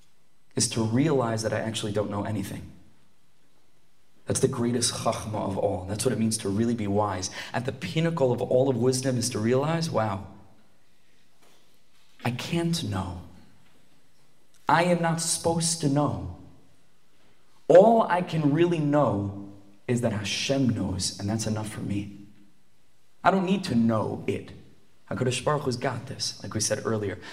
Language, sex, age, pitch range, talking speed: English, male, 30-49, 105-135 Hz, 160 wpm